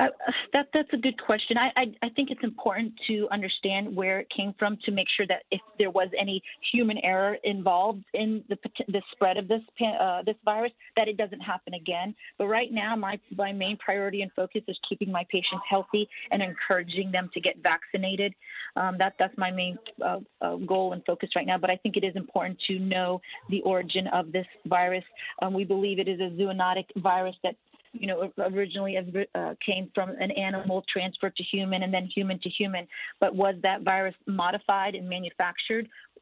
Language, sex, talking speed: English, female, 200 wpm